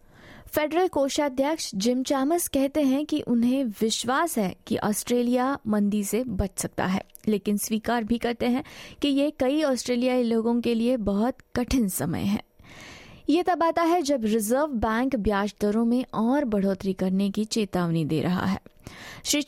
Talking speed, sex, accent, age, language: 160 wpm, female, Indian, 20-39, English